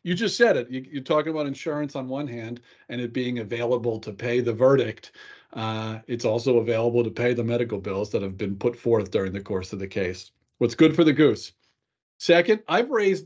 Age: 40-59